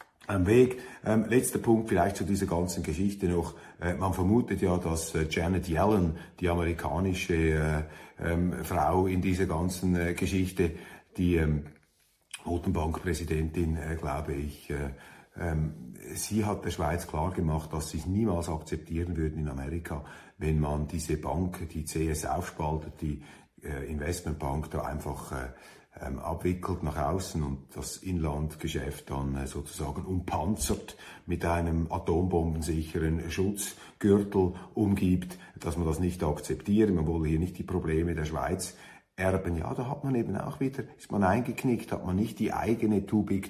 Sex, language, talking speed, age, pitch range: male, German, 150 wpm, 50-69, 80-95 Hz